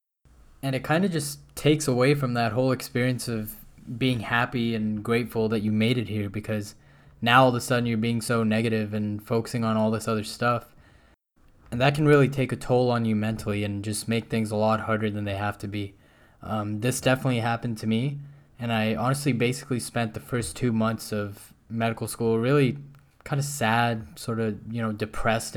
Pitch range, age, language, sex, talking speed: 110-125 Hz, 10-29, English, male, 205 wpm